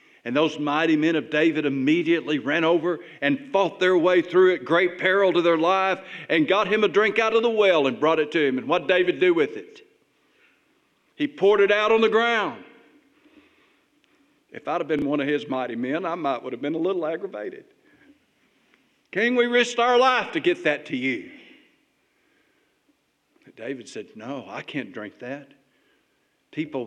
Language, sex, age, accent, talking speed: English, male, 50-69, American, 185 wpm